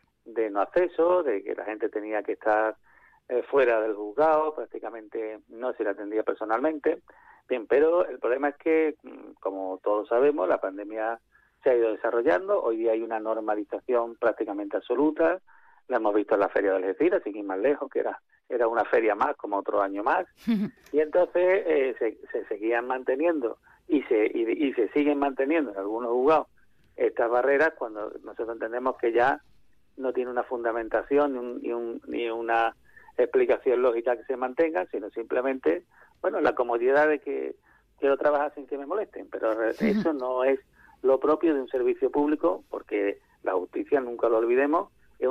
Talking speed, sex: 170 wpm, male